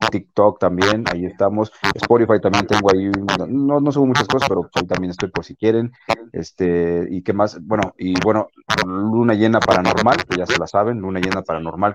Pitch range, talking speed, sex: 95-110 Hz, 190 wpm, male